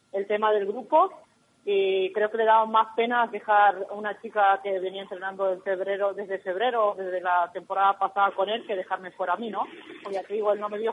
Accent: Spanish